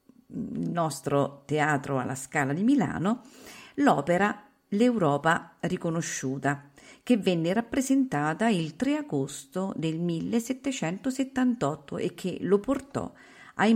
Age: 50-69